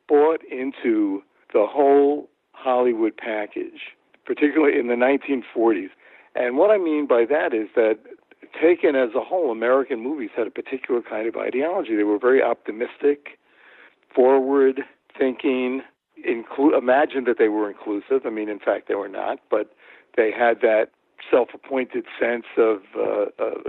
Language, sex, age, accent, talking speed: English, male, 60-79, American, 140 wpm